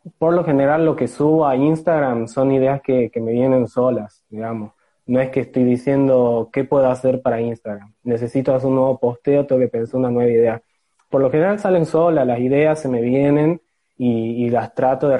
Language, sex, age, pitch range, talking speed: Spanish, male, 20-39, 120-145 Hz, 205 wpm